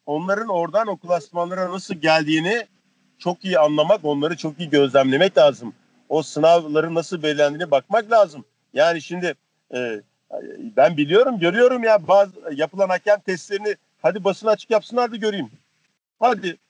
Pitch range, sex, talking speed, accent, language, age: 160-215 Hz, male, 135 wpm, native, Turkish, 50-69